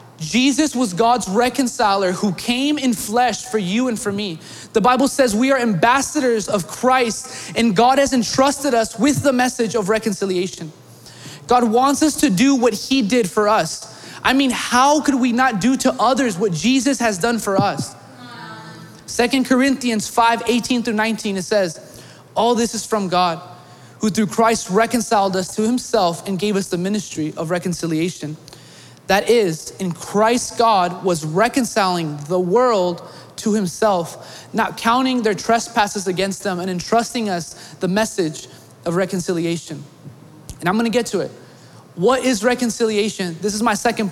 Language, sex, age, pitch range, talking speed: English, male, 20-39, 185-245 Hz, 160 wpm